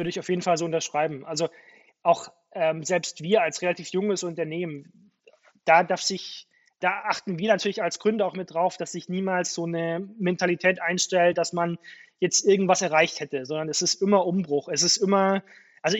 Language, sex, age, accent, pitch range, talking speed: German, male, 20-39, German, 170-200 Hz, 180 wpm